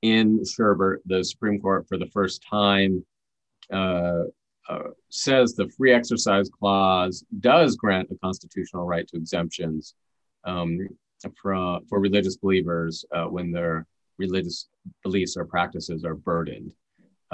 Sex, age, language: male, 30-49, English